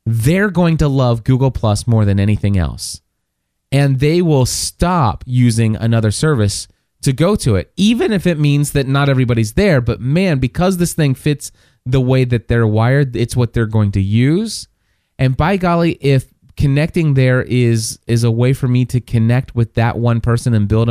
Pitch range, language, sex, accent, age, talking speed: 110-140 Hz, English, male, American, 30-49, 190 wpm